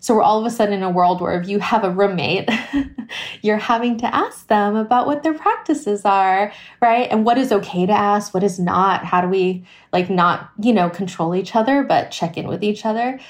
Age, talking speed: 20-39, 230 wpm